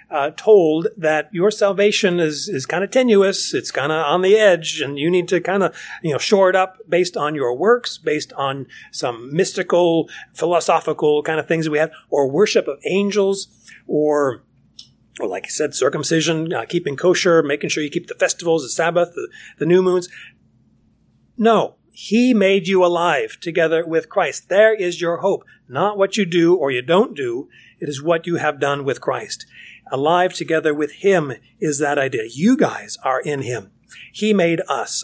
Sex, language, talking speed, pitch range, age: male, English, 190 wpm, 145-195 Hz, 40-59